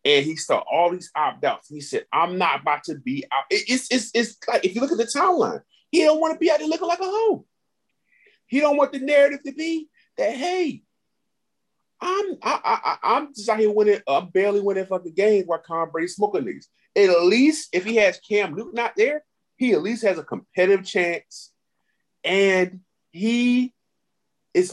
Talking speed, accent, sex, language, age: 195 wpm, American, male, English, 30-49